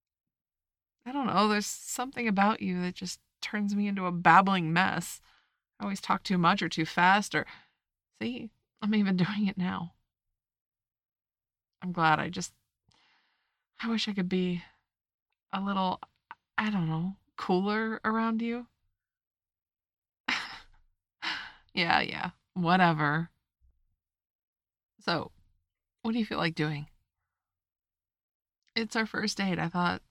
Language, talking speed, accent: English, 125 wpm, American